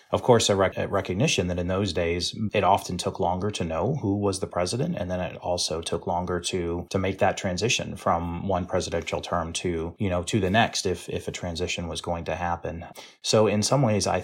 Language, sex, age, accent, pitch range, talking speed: English, male, 30-49, American, 85-105 Hz, 230 wpm